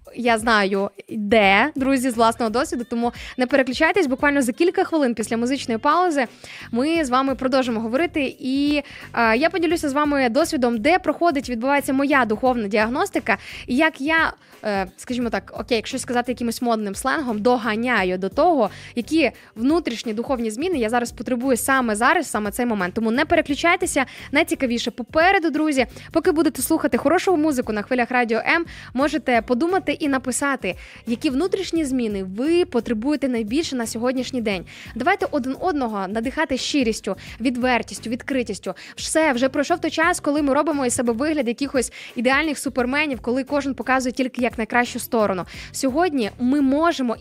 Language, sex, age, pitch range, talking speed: Ukrainian, female, 20-39, 235-295 Hz, 155 wpm